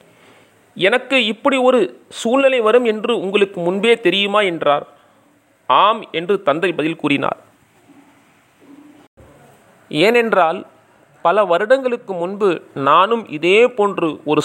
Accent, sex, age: native, male, 30-49